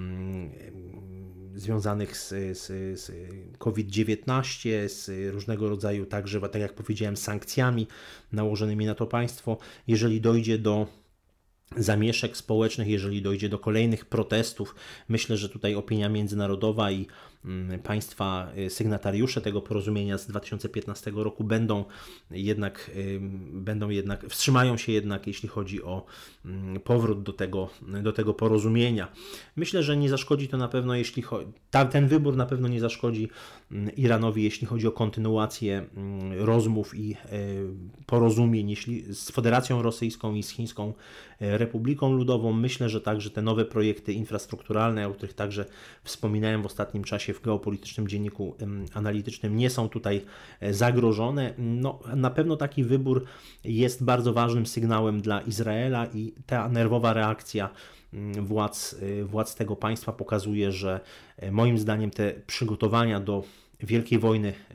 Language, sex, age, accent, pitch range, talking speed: Polish, male, 30-49, native, 100-115 Hz, 125 wpm